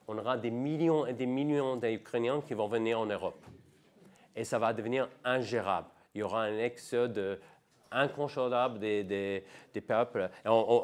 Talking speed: 165 wpm